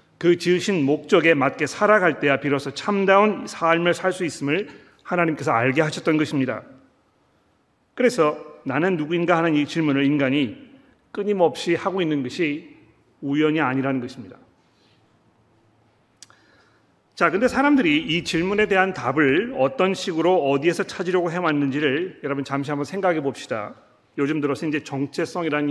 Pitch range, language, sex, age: 140-180 Hz, Korean, male, 40-59